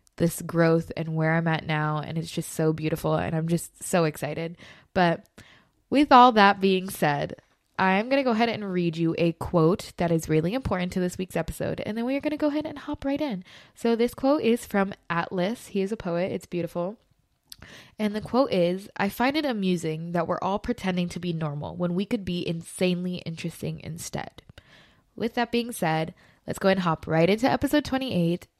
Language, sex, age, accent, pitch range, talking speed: English, female, 20-39, American, 165-215 Hz, 205 wpm